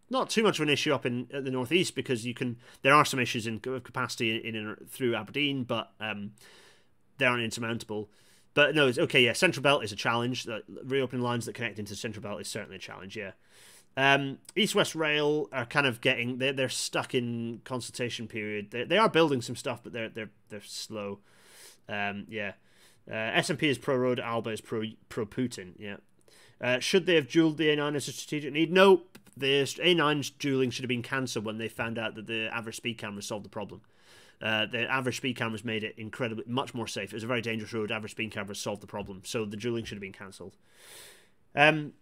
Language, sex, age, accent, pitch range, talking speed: English, male, 30-49, British, 110-140 Hz, 215 wpm